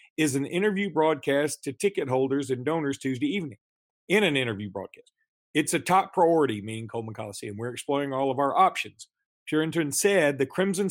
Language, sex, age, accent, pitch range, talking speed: English, male, 40-59, American, 145-210 Hz, 185 wpm